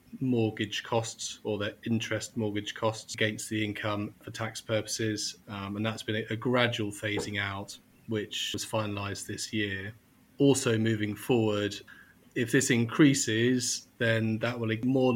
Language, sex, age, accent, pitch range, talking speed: English, male, 30-49, British, 110-120 Hz, 150 wpm